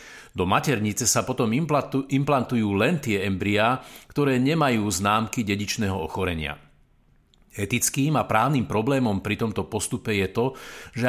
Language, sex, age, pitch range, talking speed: Slovak, male, 50-69, 105-130 Hz, 125 wpm